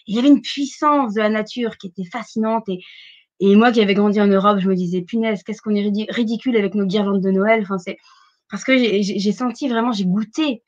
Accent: French